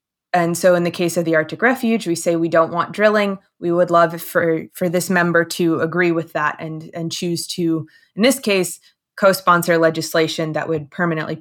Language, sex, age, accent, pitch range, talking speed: English, female, 20-39, American, 160-190 Hz, 200 wpm